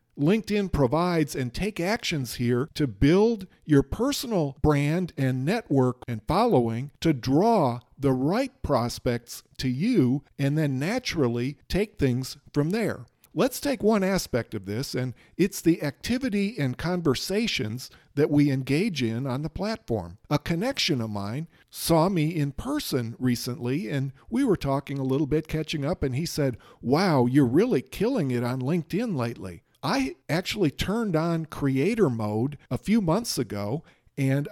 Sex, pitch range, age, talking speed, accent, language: male, 130-185 Hz, 50-69, 155 wpm, American, English